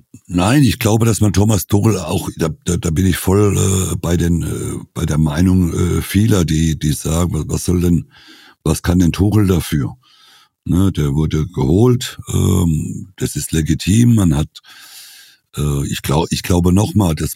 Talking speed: 175 wpm